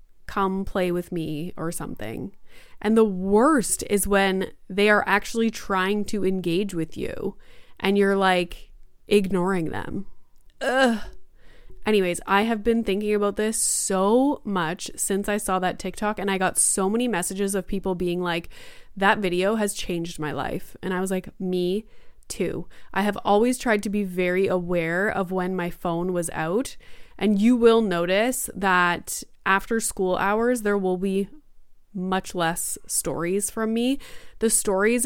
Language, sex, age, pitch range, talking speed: English, female, 20-39, 185-220 Hz, 155 wpm